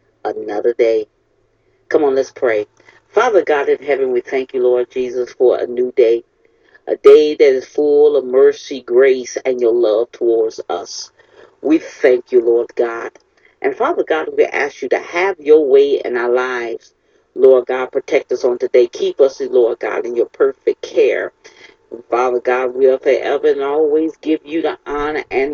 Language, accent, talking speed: English, American, 180 wpm